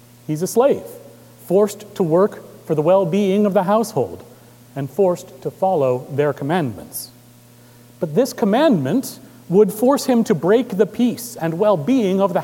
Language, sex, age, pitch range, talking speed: English, male, 40-59, 135-215 Hz, 155 wpm